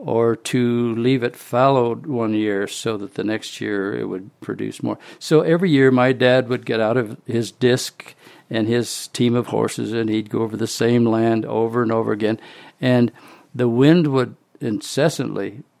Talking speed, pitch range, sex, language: 180 wpm, 115-130 Hz, male, English